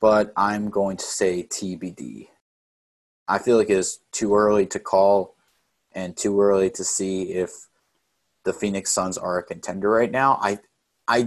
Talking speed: 165 wpm